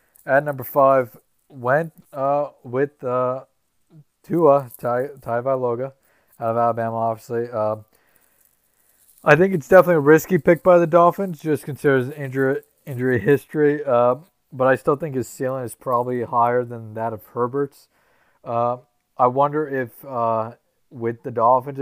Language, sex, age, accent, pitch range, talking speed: English, male, 20-39, American, 115-135 Hz, 145 wpm